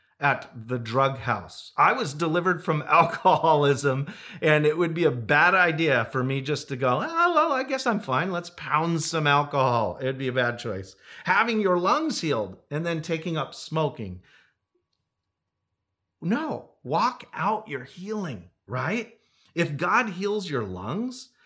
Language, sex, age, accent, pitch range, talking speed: English, male, 40-59, American, 120-185 Hz, 155 wpm